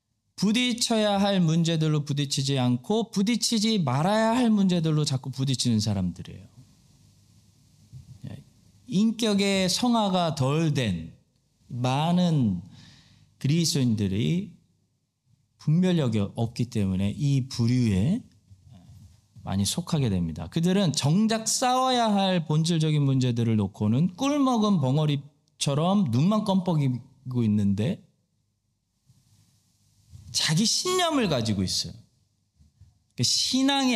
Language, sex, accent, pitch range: Korean, male, native, 110-180 Hz